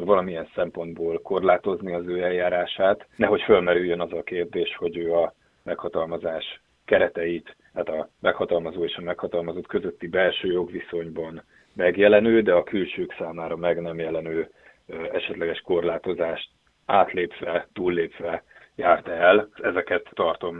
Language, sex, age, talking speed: Hungarian, male, 30-49, 120 wpm